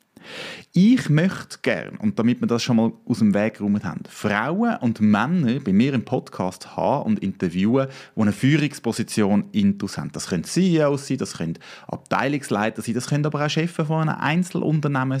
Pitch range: 115-175 Hz